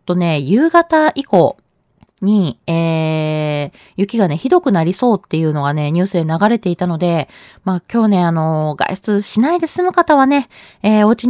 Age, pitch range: 20-39, 170-240 Hz